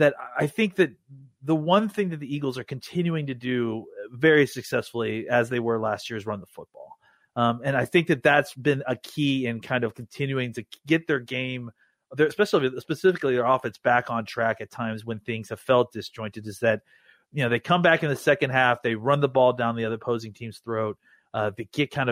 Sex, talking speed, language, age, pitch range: male, 220 wpm, English, 30-49, 115-150 Hz